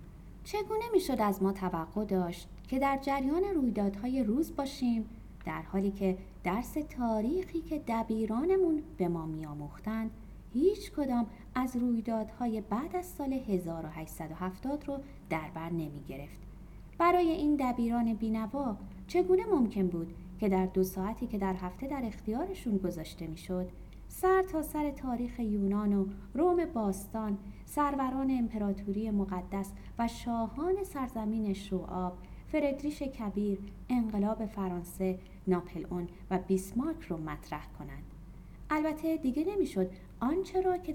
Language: Persian